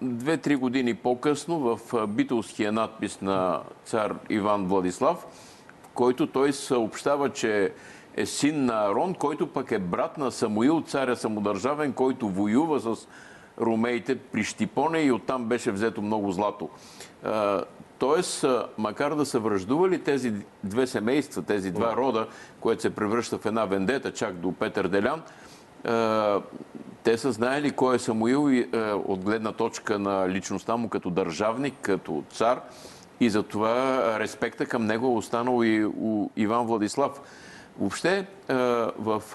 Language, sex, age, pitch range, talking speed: Bulgarian, male, 50-69, 105-130 Hz, 135 wpm